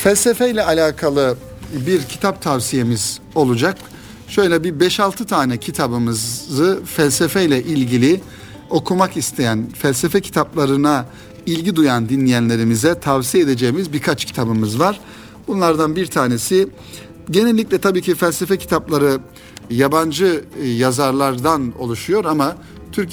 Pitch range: 120-165 Hz